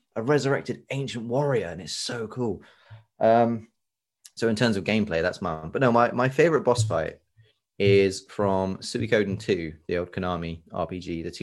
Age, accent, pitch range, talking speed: 20-39, British, 90-110 Hz, 170 wpm